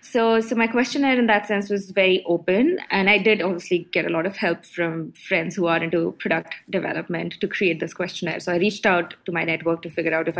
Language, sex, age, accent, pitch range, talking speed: English, female, 20-39, Indian, 175-200 Hz, 235 wpm